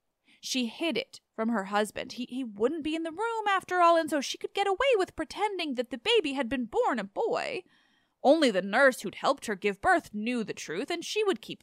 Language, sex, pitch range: English, female, 220-330 Hz